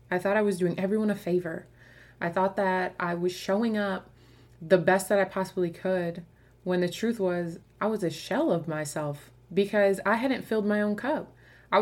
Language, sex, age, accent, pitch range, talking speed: English, female, 20-39, American, 175-215 Hz, 200 wpm